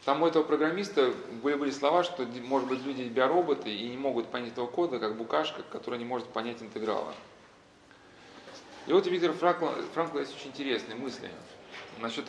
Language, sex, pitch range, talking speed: Russian, male, 125-160 Hz, 165 wpm